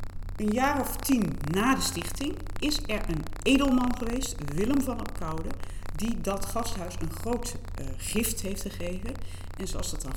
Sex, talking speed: female, 165 wpm